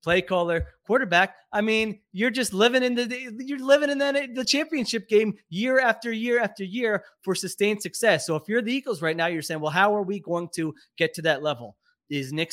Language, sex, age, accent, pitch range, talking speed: English, male, 30-49, American, 160-200 Hz, 220 wpm